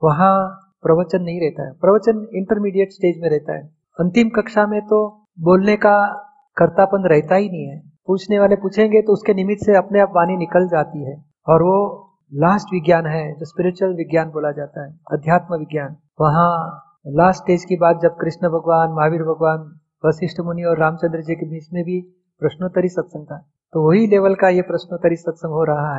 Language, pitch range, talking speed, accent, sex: Hindi, 155-185 Hz, 180 wpm, native, male